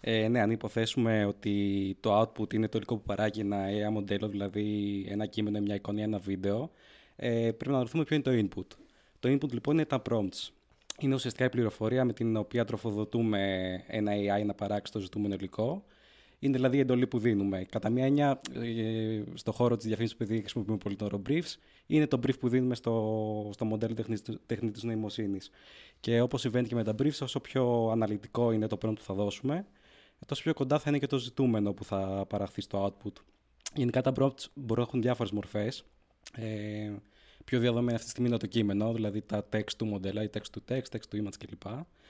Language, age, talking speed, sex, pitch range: Greek, 20-39, 190 wpm, male, 105-125 Hz